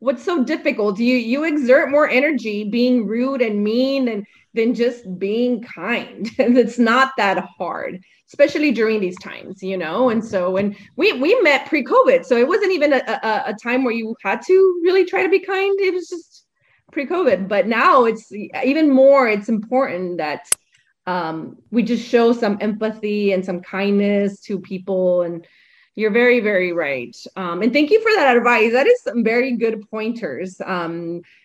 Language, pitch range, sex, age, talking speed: English, 195-265 Hz, female, 20-39, 180 wpm